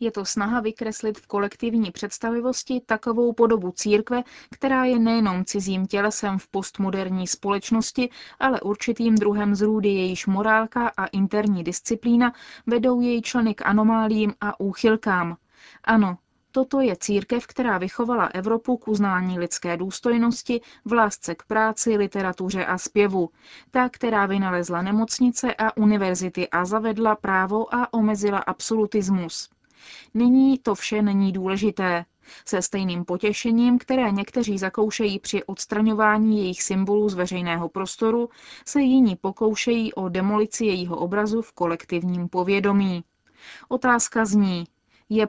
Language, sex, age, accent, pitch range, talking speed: Czech, female, 20-39, native, 190-225 Hz, 125 wpm